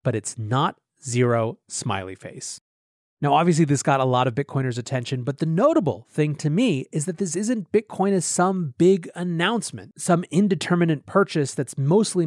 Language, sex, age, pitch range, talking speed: English, male, 30-49, 130-185 Hz, 170 wpm